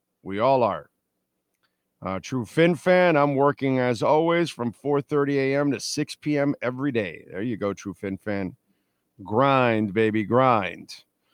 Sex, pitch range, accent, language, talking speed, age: male, 110-140 Hz, American, English, 155 wpm, 50-69